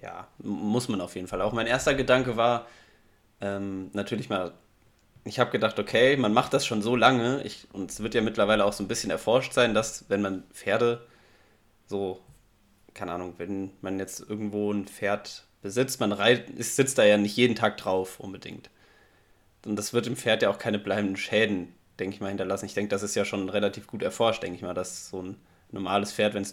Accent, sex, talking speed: German, male, 205 wpm